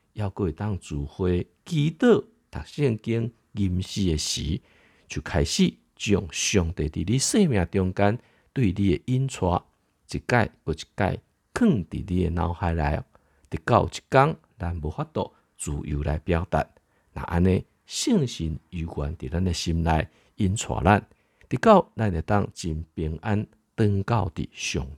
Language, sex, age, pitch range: Chinese, male, 50-69, 80-105 Hz